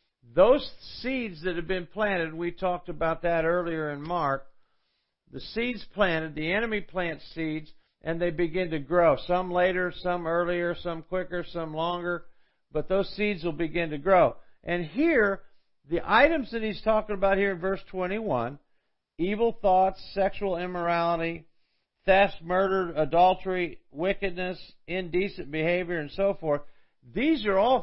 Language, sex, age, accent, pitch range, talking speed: English, male, 50-69, American, 160-195 Hz, 145 wpm